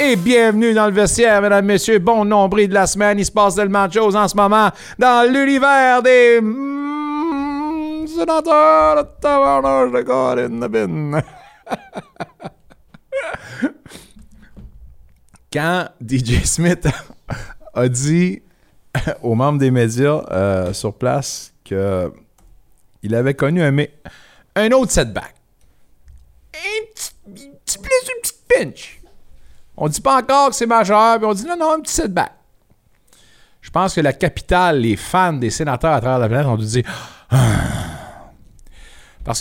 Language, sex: French, male